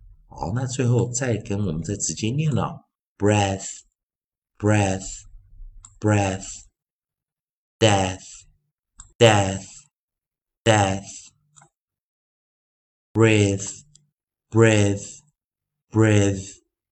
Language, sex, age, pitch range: Chinese, male, 50-69, 95-125 Hz